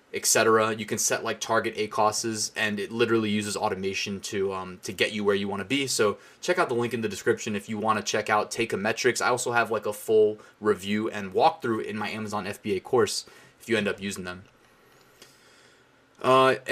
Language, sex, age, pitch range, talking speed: English, male, 20-39, 105-130 Hz, 215 wpm